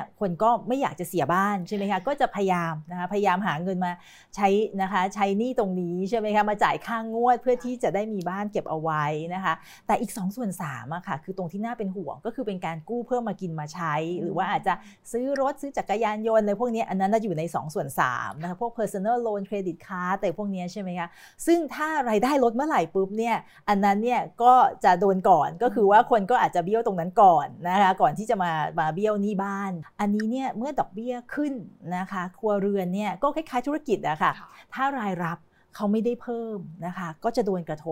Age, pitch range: 30-49, 180-235 Hz